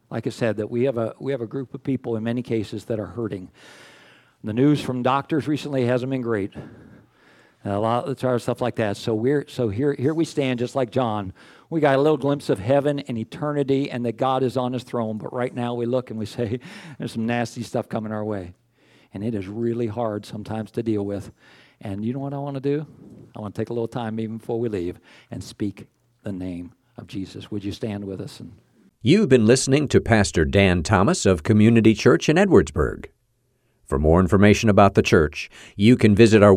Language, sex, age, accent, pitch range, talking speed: English, male, 50-69, American, 100-130 Hz, 225 wpm